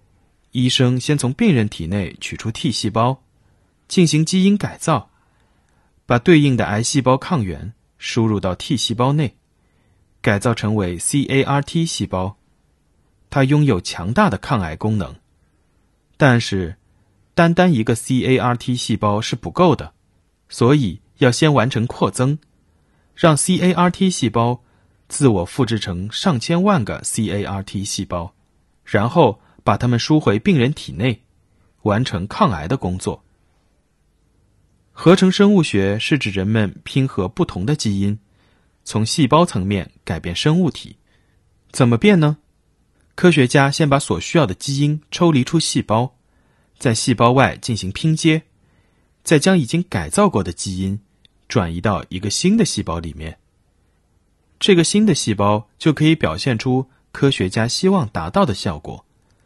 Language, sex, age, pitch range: English, male, 30-49, 95-145 Hz